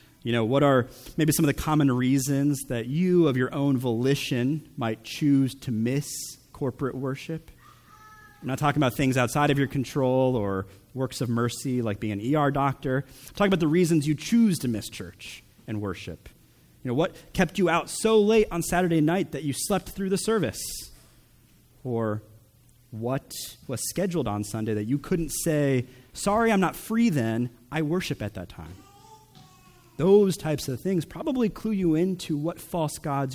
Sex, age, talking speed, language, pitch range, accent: male, 30-49, 180 wpm, English, 120-170 Hz, American